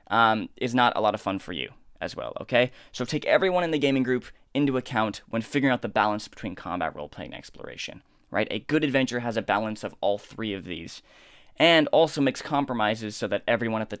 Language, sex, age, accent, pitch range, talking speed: English, male, 10-29, American, 105-130 Hz, 225 wpm